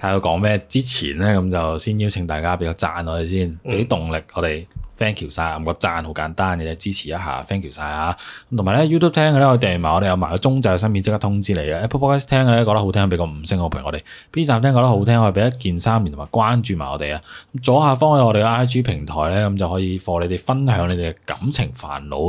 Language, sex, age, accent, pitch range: Chinese, male, 20-39, native, 85-120 Hz